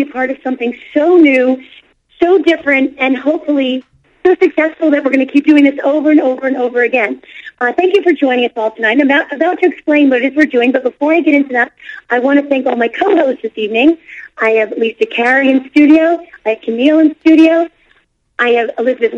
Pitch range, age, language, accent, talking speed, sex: 245-315 Hz, 40-59, English, American, 220 wpm, female